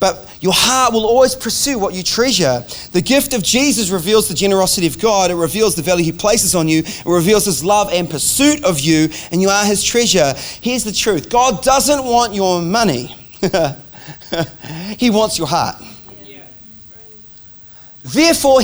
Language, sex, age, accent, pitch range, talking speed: English, male, 30-49, Australian, 170-235 Hz, 165 wpm